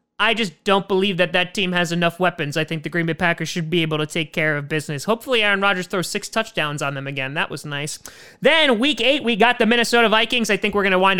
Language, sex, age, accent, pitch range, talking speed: English, male, 30-49, American, 175-245 Hz, 270 wpm